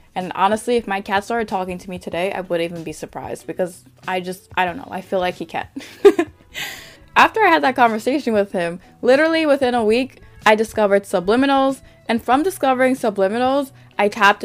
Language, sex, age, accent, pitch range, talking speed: English, female, 20-39, American, 190-250 Hz, 195 wpm